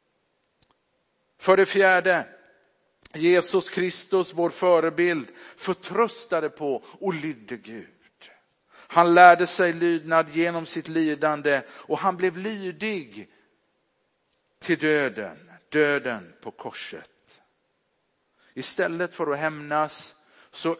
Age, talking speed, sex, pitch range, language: 50-69, 95 wpm, male, 150-180 Hz, Swedish